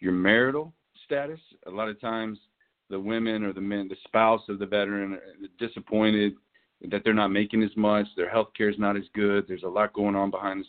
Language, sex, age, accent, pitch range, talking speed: English, male, 40-59, American, 95-115 Hz, 220 wpm